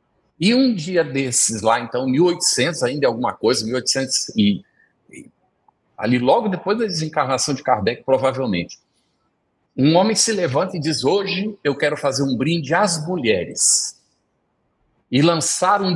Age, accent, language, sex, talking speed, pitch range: 60-79, Brazilian, Portuguese, male, 145 wpm, 135-205 Hz